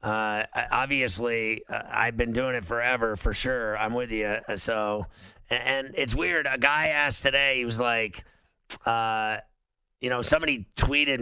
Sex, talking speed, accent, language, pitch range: male, 150 wpm, American, English, 105-130 Hz